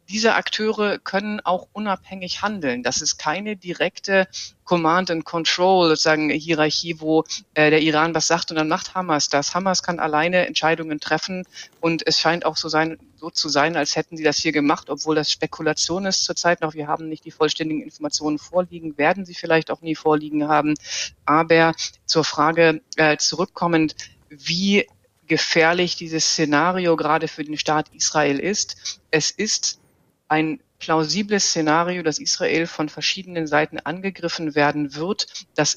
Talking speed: 155 wpm